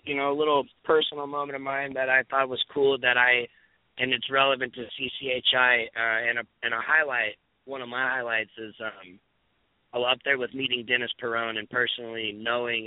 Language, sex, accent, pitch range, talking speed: English, male, American, 110-130 Hz, 195 wpm